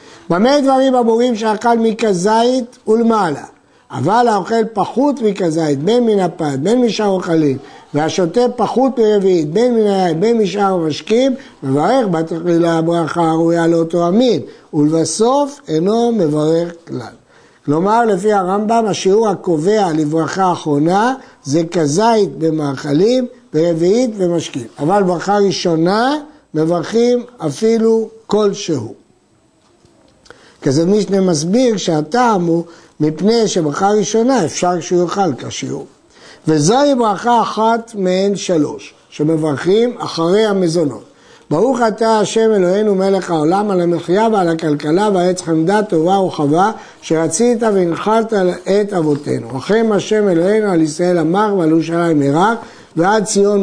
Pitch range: 165-225 Hz